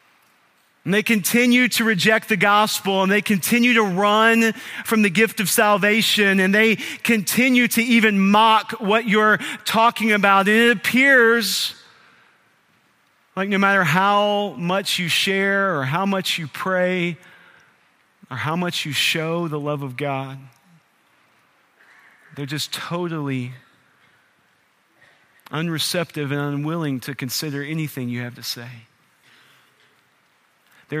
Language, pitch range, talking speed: English, 165-250 Hz, 125 wpm